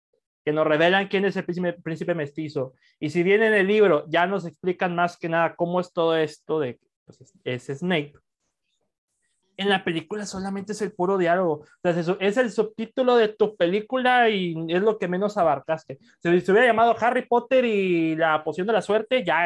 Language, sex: Spanish, male